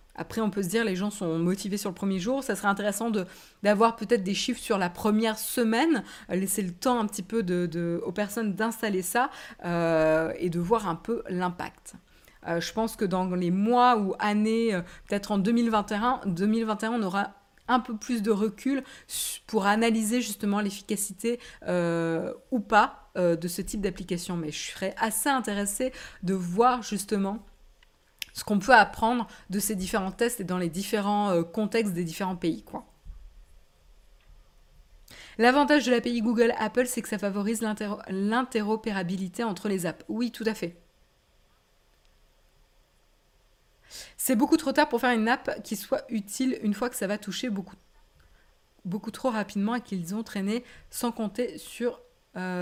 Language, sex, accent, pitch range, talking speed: French, female, French, 190-230 Hz, 160 wpm